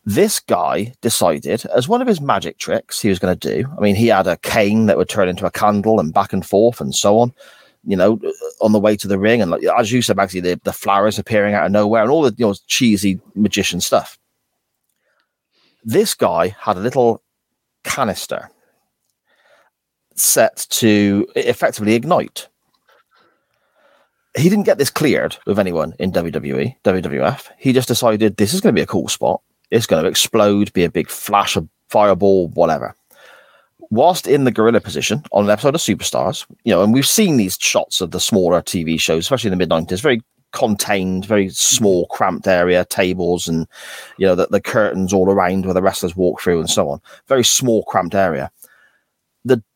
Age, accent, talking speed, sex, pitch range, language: 30-49, British, 190 wpm, male, 95-115 Hz, English